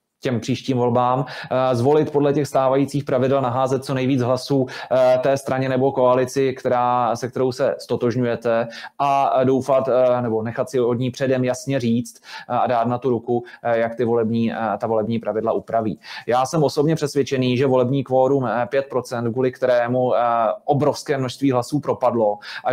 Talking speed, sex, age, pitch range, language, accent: 155 wpm, male, 20-39, 120-135 Hz, Czech, native